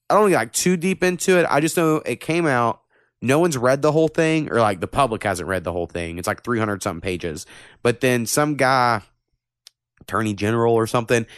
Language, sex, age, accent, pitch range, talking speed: English, male, 20-39, American, 110-175 Hz, 220 wpm